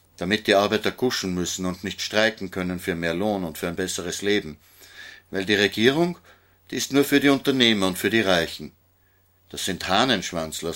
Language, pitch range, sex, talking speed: German, 90-105 Hz, male, 185 wpm